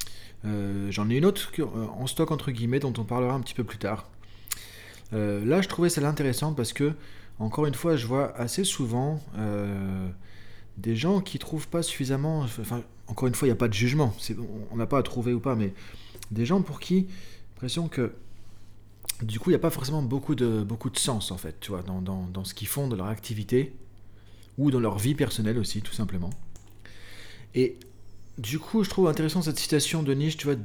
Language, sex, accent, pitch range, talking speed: French, male, French, 105-135 Hz, 215 wpm